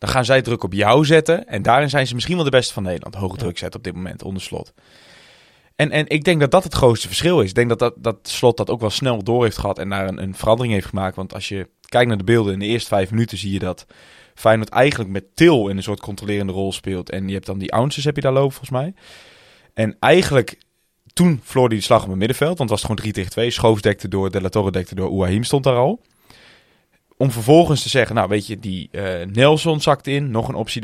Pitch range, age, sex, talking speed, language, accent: 100-135 Hz, 20-39, male, 265 wpm, Dutch, Dutch